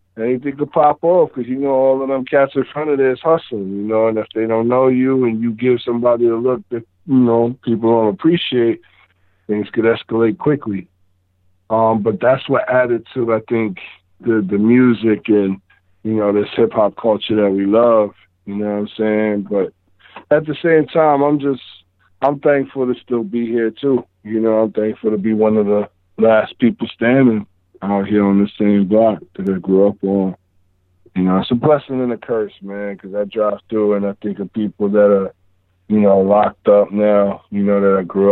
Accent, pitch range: American, 100-125 Hz